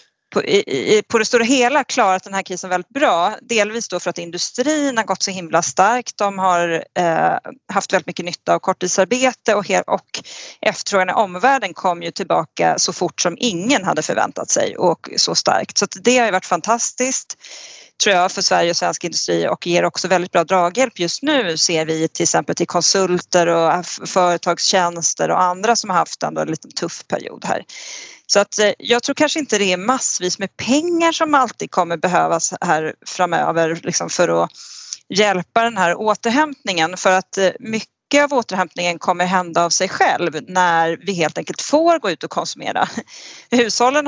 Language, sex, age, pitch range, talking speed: Swedish, female, 30-49, 175-240 Hz, 185 wpm